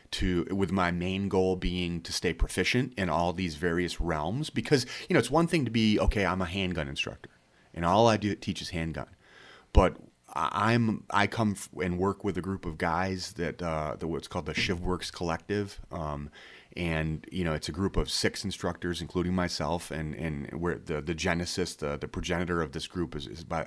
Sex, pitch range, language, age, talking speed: male, 80-95 Hz, English, 30-49, 210 wpm